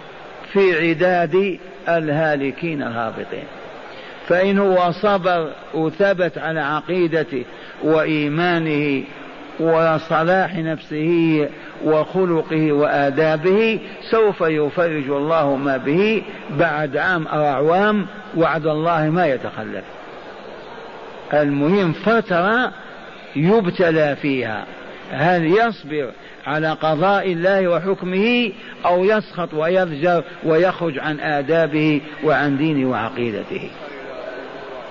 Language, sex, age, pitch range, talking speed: Arabic, male, 50-69, 155-195 Hz, 80 wpm